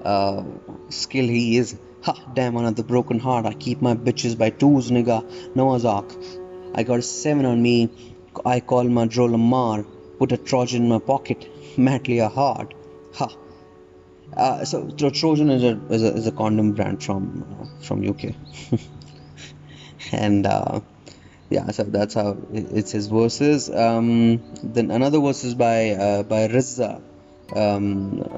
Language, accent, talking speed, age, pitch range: Hindi, native, 155 wpm, 20-39, 100-120 Hz